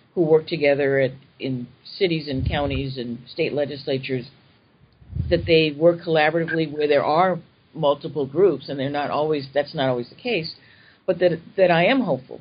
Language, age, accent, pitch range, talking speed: English, 50-69, American, 140-175 Hz, 165 wpm